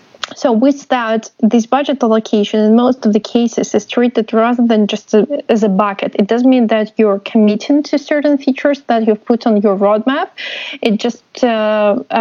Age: 20-39